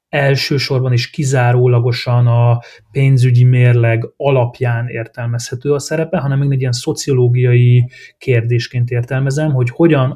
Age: 30-49